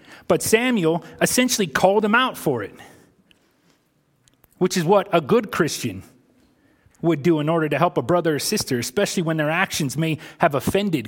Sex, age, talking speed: male, 30-49, 170 wpm